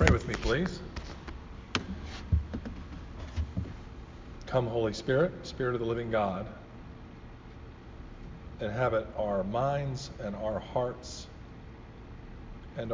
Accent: American